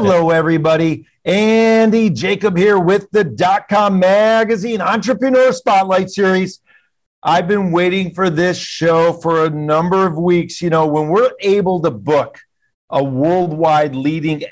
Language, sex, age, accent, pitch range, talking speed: English, male, 50-69, American, 155-205 Hz, 135 wpm